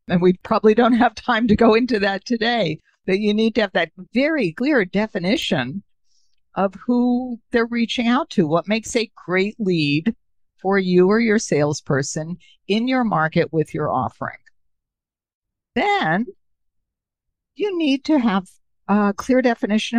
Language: English